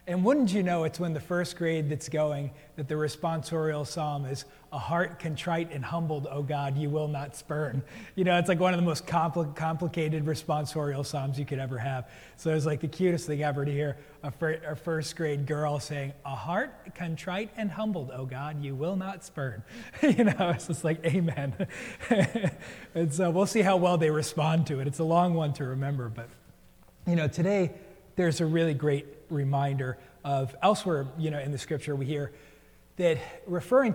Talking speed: 200 wpm